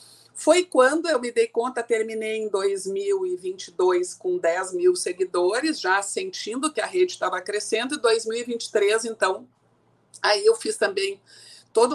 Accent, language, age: Brazilian, Portuguese, 50-69